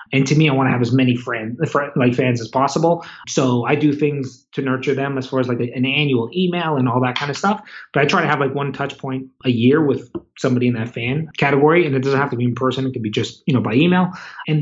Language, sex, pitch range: English, male, 130-155 Hz